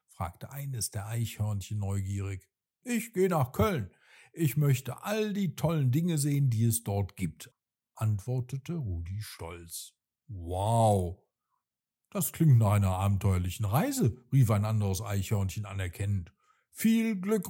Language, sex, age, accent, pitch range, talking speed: German, male, 50-69, German, 100-160 Hz, 125 wpm